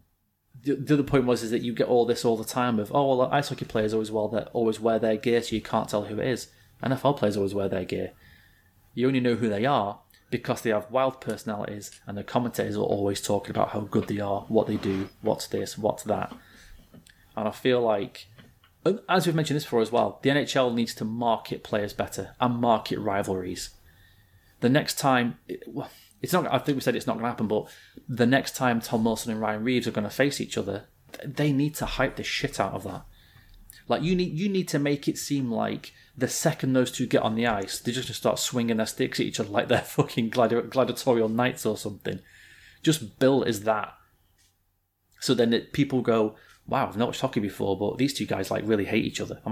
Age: 30-49